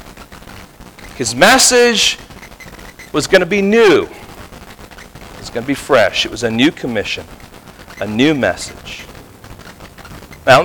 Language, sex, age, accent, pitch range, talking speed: English, male, 40-59, American, 160-220 Hz, 130 wpm